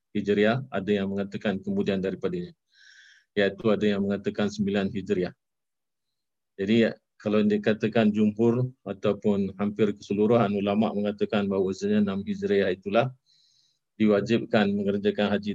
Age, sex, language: 50-69, male, Malay